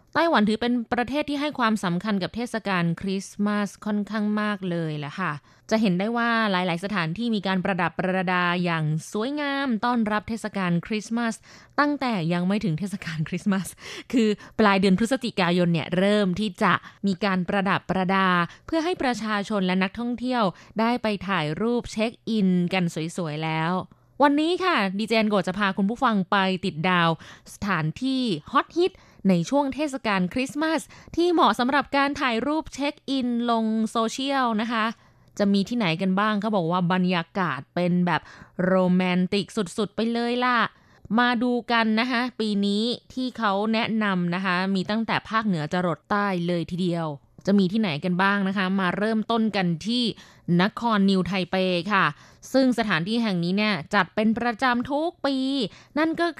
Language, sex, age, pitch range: Thai, female, 20-39, 185-235 Hz